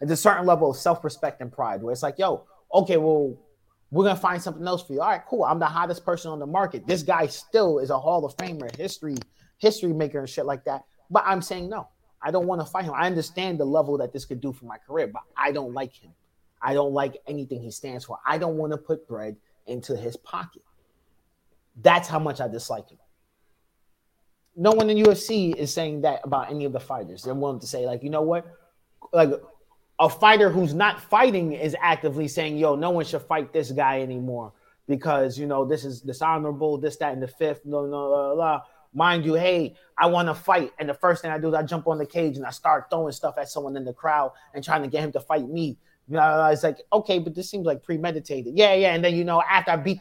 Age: 30-49